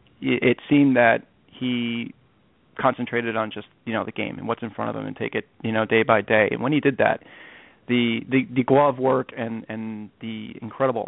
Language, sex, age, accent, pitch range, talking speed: English, male, 30-49, American, 115-130 Hz, 210 wpm